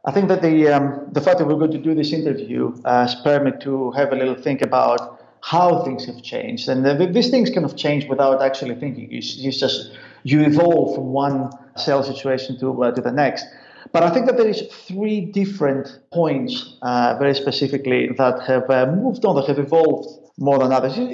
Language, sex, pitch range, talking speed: English, male, 130-165 Hz, 215 wpm